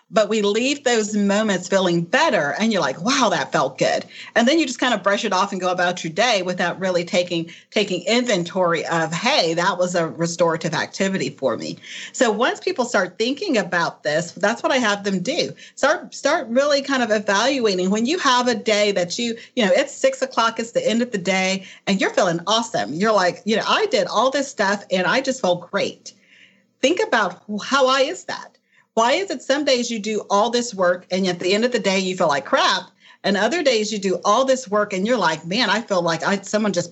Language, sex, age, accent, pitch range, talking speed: English, female, 40-59, American, 190-250 Hz, 230 wpm